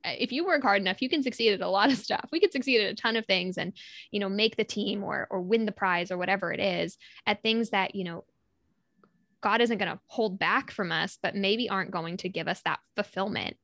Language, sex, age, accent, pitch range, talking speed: English, female, 10-29, American, 190-230 Hz, 255 wpm